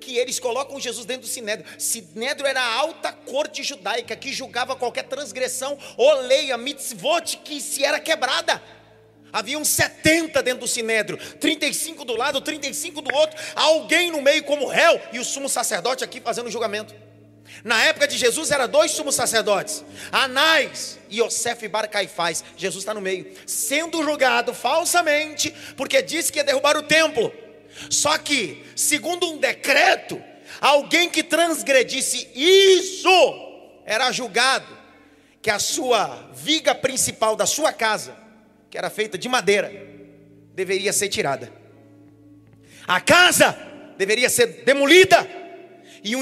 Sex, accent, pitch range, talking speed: male, Brazilian, 220-305 Hz, 140 wpm